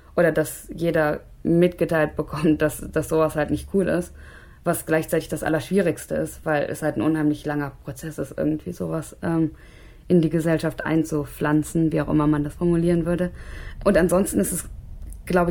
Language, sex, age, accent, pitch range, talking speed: German, female, 20-39, German, 150-165 Hz, 170 wpm